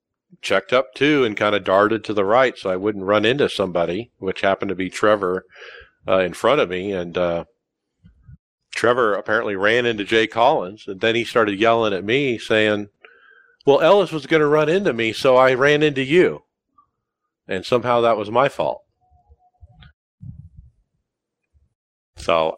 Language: English